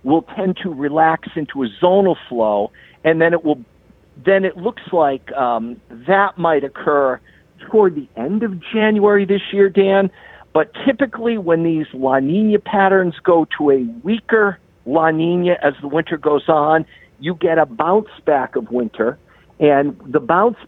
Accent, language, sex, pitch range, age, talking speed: American, English, male, 140-200 Hz, 50-69, 165 wpm